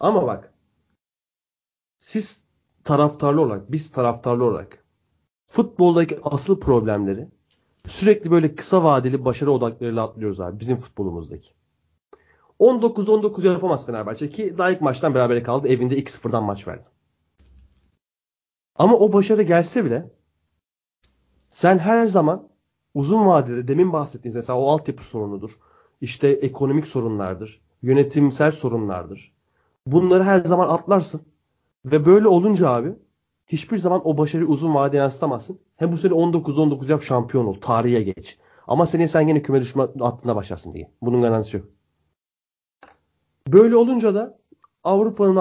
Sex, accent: male, native